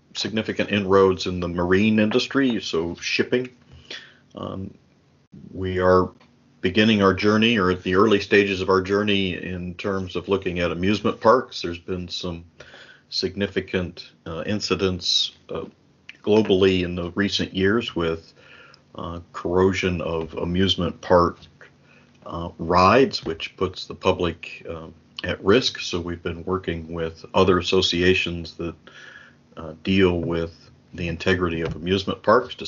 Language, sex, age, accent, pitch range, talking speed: English, male, 40-59, American, 85-100 Hz, 135 wpm